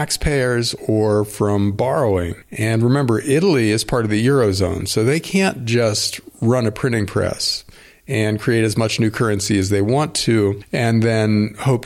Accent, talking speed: American, 165 wpm